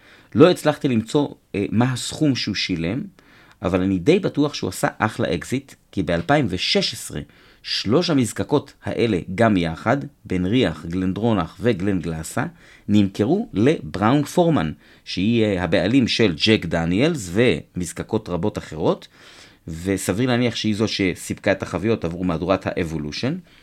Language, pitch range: Hebrew, 95-145 Hz